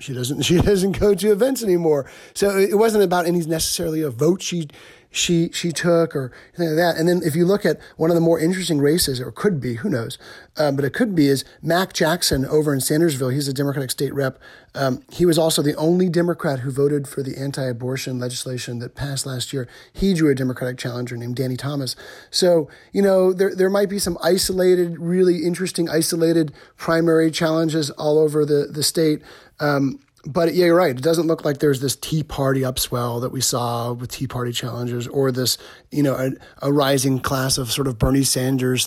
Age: 40-59